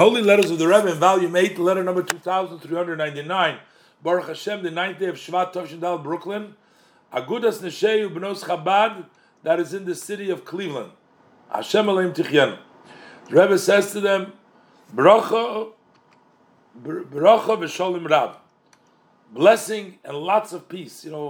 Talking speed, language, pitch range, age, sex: 145 wpm, English, 160-210 Hz, 50-69, male